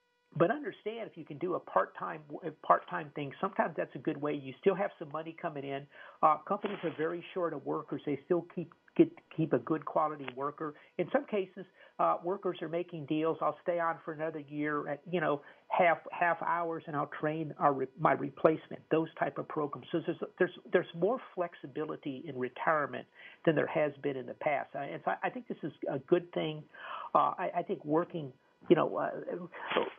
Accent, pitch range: American, 145-180 Hz